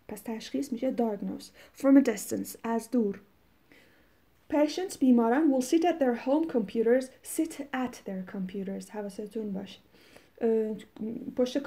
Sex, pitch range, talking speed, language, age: female, 225-270 Hz, 110 wpm, Persian, 30-49